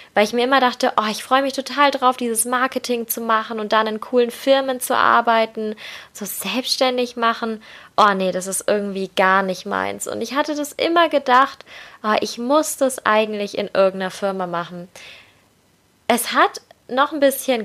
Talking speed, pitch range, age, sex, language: 175 wpm, 195-250 Hz, 20-39, female, German